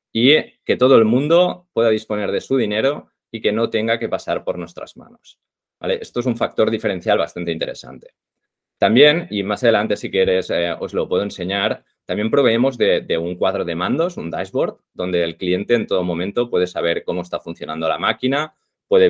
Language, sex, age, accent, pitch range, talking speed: Spanish, male, 20-39, Spanish, 90-125 Hz, 190 wpm